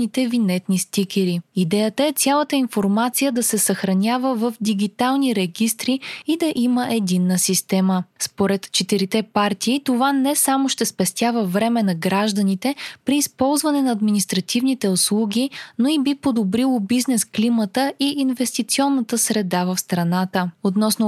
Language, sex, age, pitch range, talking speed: Bulgarian, female, 20-39, 195-250 Hz, 130 wpm